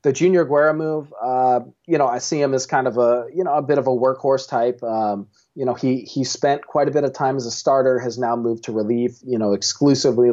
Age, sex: 30-49, male